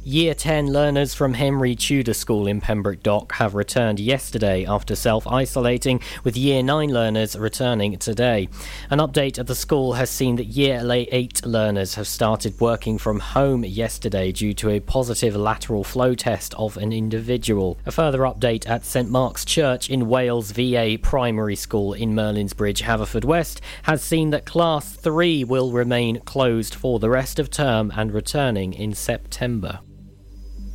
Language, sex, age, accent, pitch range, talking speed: English, male, 40-59, British, 105-135 Hz, 160 wpm